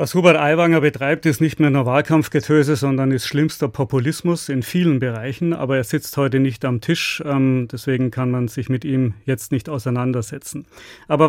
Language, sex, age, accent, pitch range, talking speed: German, male, 40-59, German, 140-170 Hz, 180 wpm